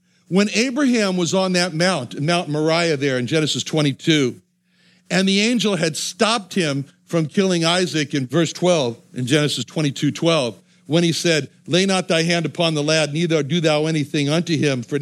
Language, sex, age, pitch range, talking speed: English, male, 60-79, 150-195 Hz, 180 wpm